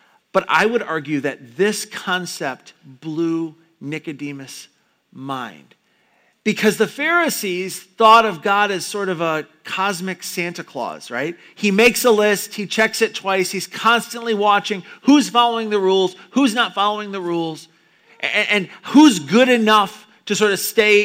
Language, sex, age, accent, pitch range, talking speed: English, male, 40-59, American, 170-215 Hz, 150 wpm